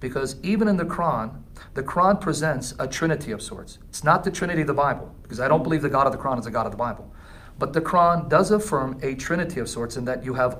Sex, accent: male, American